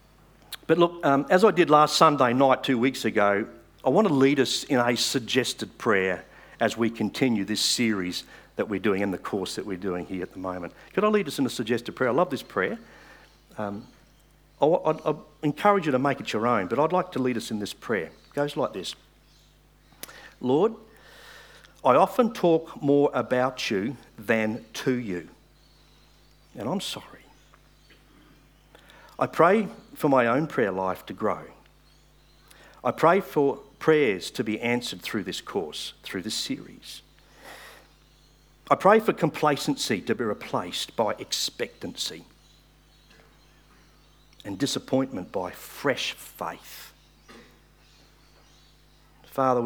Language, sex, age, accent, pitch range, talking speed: English, male, 50-69, Australian, 115-150 Hz, 150 wpm